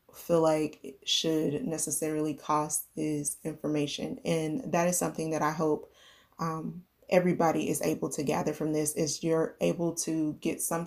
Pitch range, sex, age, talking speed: 155-170 Hz, female, 20-39, 160 wpm